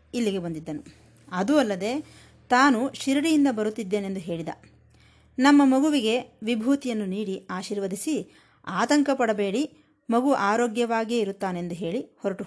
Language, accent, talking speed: Kannada, native, 95 wpm